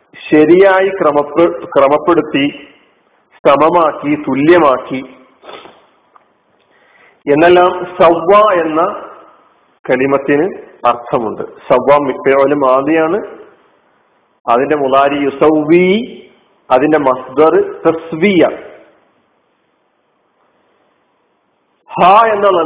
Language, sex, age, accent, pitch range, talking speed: Malayalam, male, 50-69, native, 145-200 Hz, 50 wpm